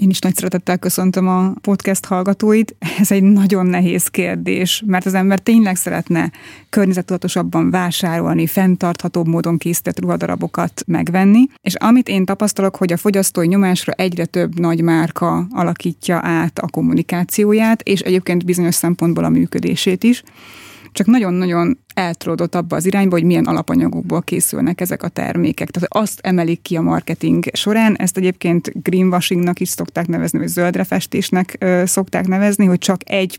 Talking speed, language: 145 wpm, Hungarian